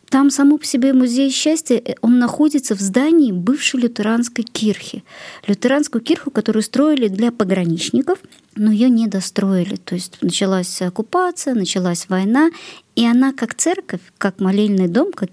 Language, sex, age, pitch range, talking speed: Russian, male, 40-59, 195-290 Hz, 145 wpm